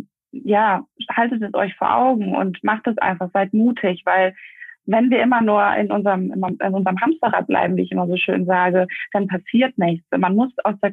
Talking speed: 200 wpm